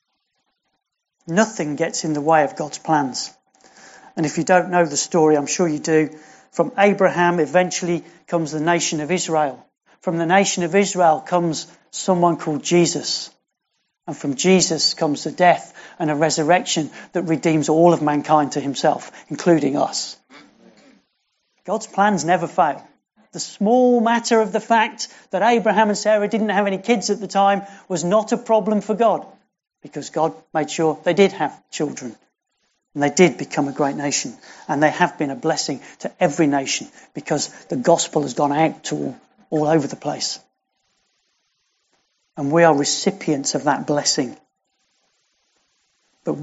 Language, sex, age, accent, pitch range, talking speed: English, male, 40-59, British, 155-190 Hz, 160 wpm